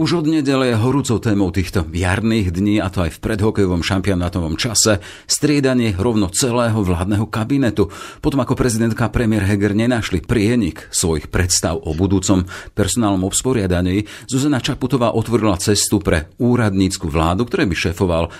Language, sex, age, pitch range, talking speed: Slovak, male, 40-59, 90-115 Hz, 145 wpm